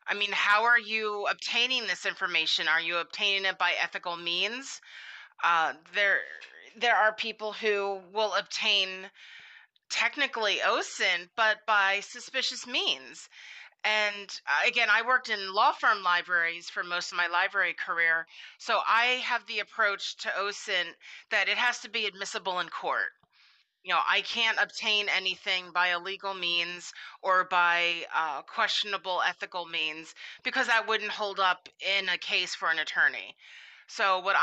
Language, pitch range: English, 180-220 Hz